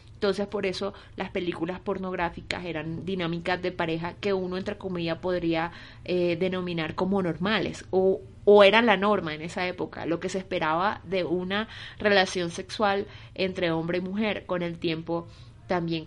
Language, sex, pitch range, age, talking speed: Spanish, female, 160-200 Hz, 30-49, 160 wpm